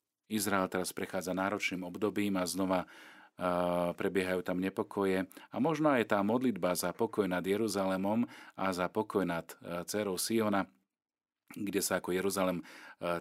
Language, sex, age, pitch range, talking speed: Slovak, male, 40-59, 90-100 Hz, 145 wpm